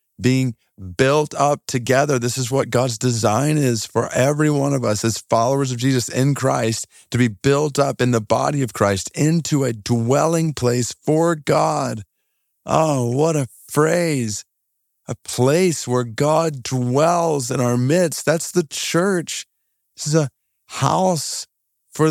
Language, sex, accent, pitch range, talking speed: English, male, American, 115-155 Hz, 150 wpm